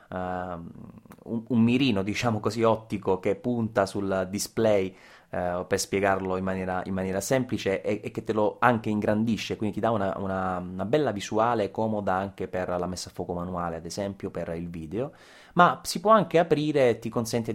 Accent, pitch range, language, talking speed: native, 95-115 Hz, Italian, 180 wpm